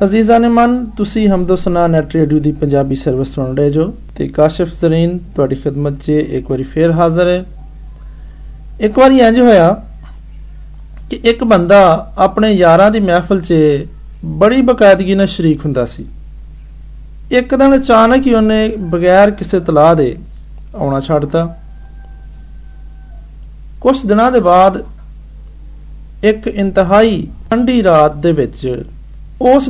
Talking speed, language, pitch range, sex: 50 wpm, Hindi, 125-195 Hz, male